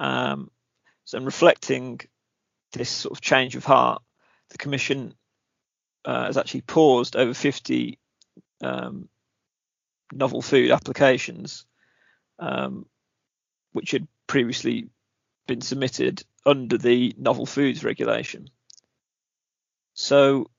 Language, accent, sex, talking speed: English, British, male, 100 wpm